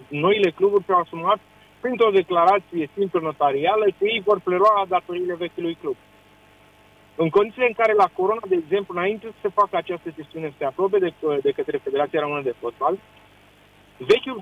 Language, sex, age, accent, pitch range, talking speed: Romanian, male, 30-49, native, 170-225 Hz, 165 wpm